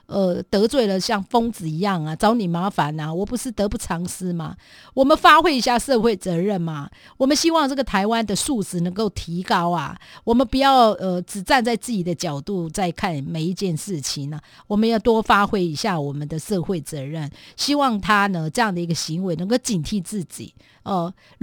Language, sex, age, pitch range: Chinese, female, 50-69, 175-230 Hz